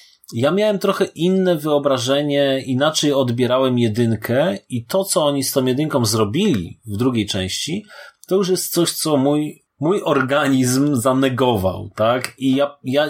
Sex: male